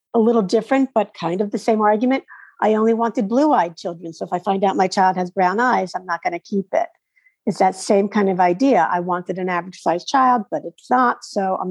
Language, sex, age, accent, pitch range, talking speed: English, female, 50-69, American, 180-230 Hz, 245 wpm